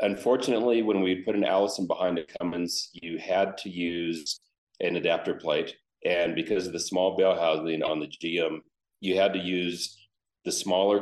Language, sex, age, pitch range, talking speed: English, male, 40-59, 85-105 Hz, 175 wpm